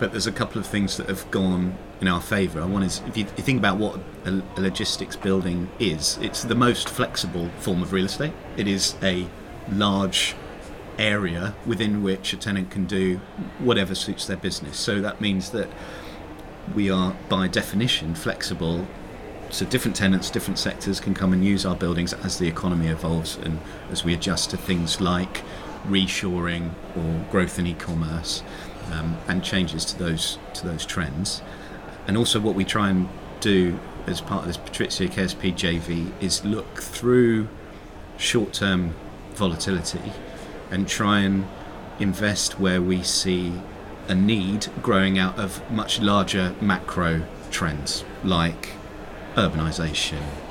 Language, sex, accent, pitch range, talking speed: English, male, British, 85-100 Hz, 150 wpm